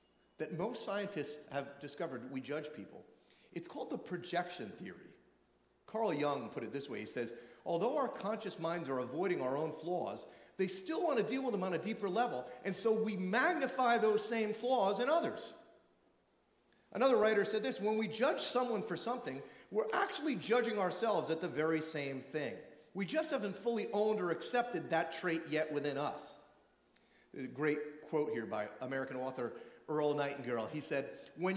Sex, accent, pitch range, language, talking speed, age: male, American, 150-240 Hz, English, 175 wpm, 40-59